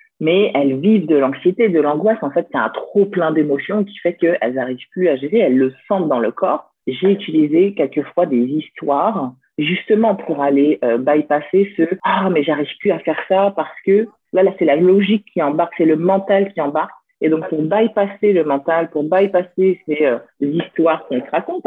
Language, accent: French, French